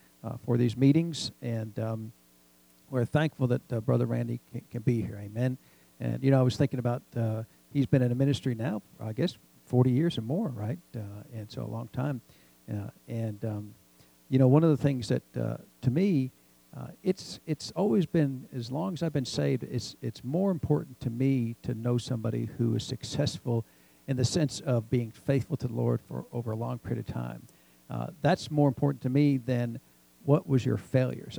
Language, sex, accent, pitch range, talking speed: English, male, American, 110-140 Hz, 205 wpm